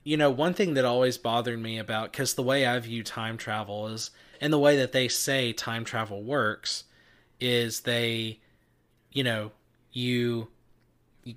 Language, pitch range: English, 110-130 Hz